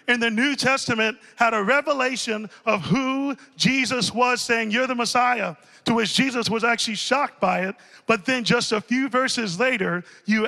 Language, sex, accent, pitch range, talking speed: English, male, American, 210-245 Hz, 180 wpm